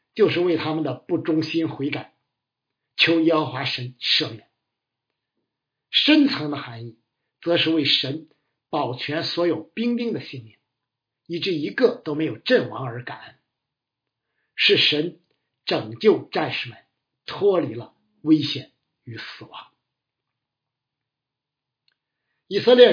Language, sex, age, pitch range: Chinese, male, 50-69, 130-175 Hz